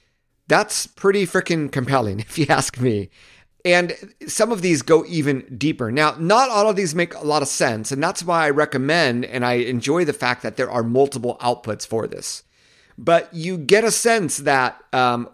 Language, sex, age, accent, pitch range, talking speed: English, male, 50-69, American, 120-175 Hz, 190 wpm